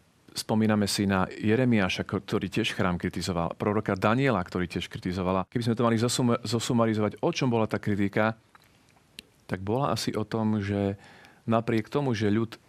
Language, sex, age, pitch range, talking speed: Slovak, male, 40-59, 100-120 Hz, 160 wpm